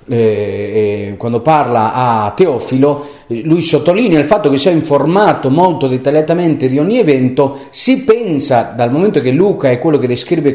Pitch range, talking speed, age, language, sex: 125-170 Hz, 150 wpm, 40-59, Italian, male